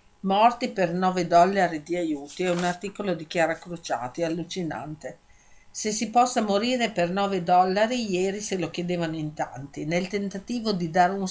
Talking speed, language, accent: 165 wpm, Italian, native